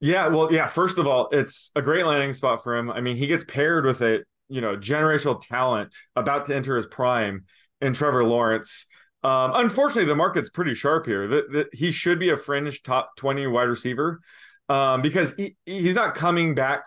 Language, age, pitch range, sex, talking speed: English, 20-39, 125-160 Hz, male, 205 wpm